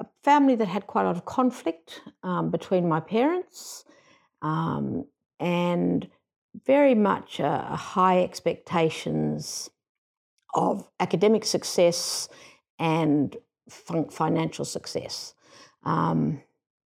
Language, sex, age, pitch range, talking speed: English, female, 60-79, 150-190 Hz, 105 wpm